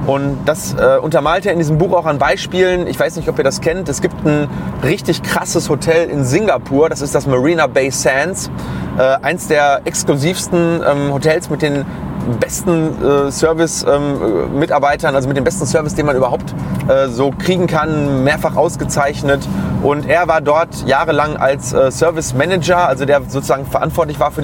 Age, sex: 30-49, male